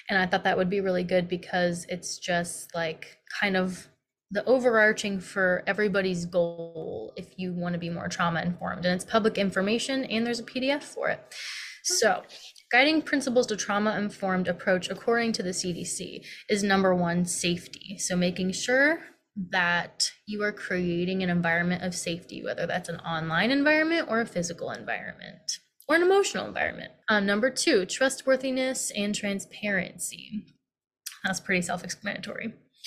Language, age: English, 20-39